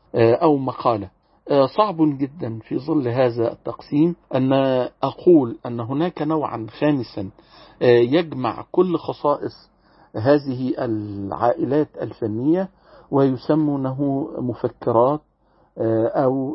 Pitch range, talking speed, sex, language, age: 120-155 Hz, 85 wpm, male, Arabic, 50-69